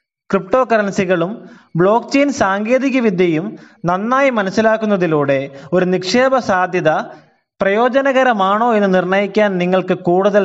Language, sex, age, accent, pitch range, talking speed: Malayalam, male, 20-39, native, 165-220 Hz, 90 wpm